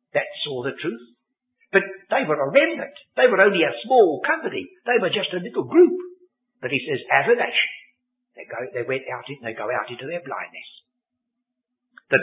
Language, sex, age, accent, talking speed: English, male, 60-79, British, 195 wpm